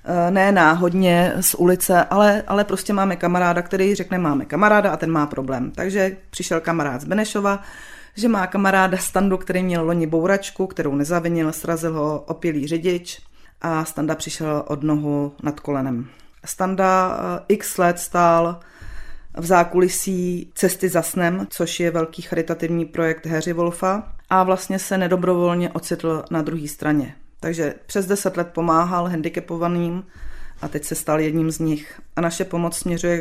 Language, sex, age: Czech, female, 30-49